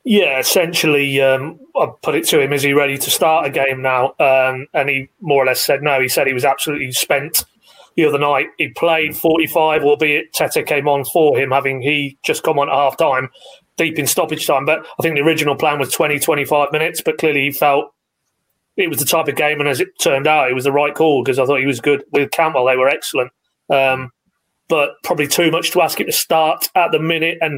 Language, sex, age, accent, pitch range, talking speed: English, male, 30-49, British, 140-155 Hz, 235 wpm